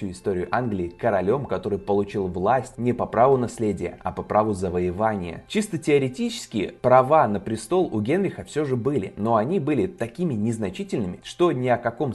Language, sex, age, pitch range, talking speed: Russian, male, 20-39, 100-135 Hz, 165 wpm